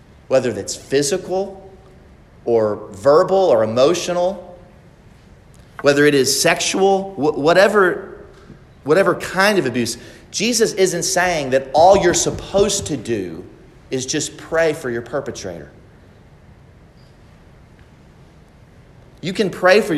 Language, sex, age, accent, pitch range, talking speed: English, male, 40-59, American, 120-170 Hz, 105 wpm